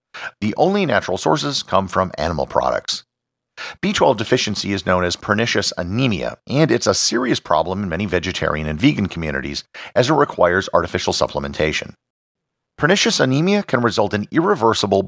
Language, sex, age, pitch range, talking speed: English, male, 50-69, 90-120 Hz, 145 wpm